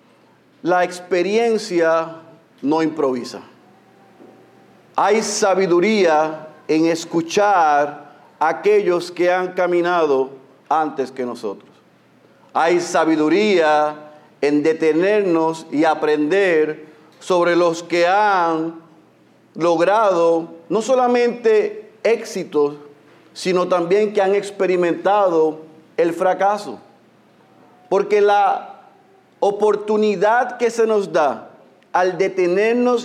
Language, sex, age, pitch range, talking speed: Spanish, male, 40-59, 160-220 Hz, 85 wpm